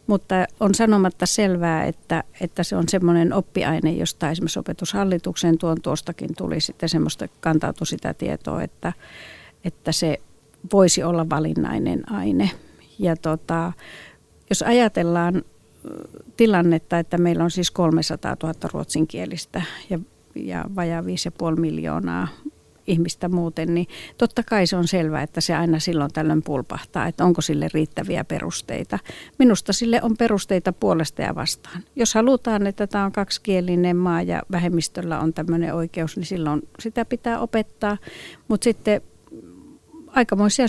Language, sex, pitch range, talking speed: Finnish, female, 165-200 Hz, 130 wpm